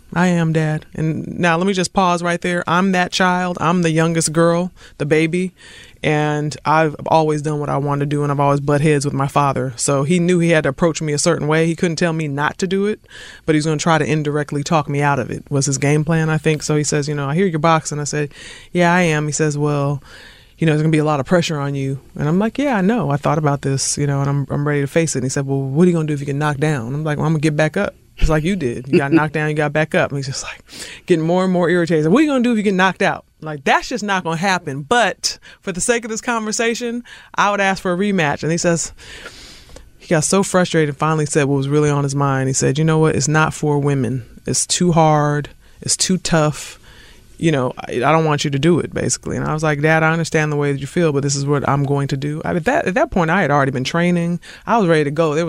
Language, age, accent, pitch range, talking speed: English, 30-49, American, 145-180 Hz, 295 wpm